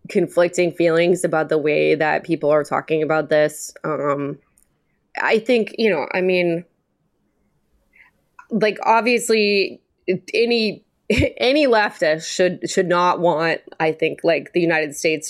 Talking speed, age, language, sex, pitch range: 130 wpm, 20-39, English, female, 155-195 Hz